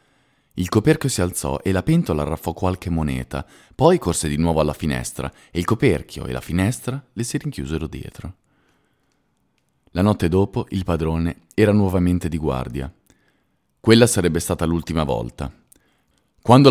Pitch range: 80-110 Hz